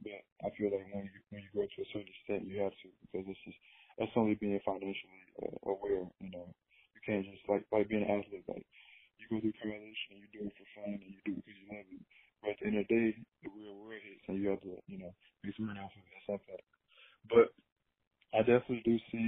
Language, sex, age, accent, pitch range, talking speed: English, male, 20-39, American, 95-105 Hz, 250 wpm